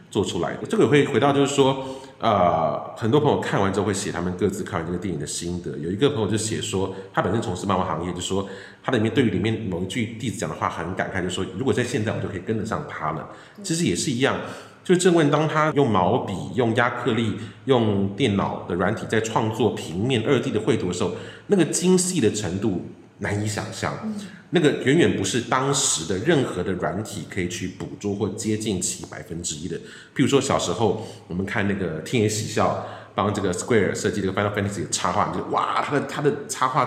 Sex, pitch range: male, 95-130 Hz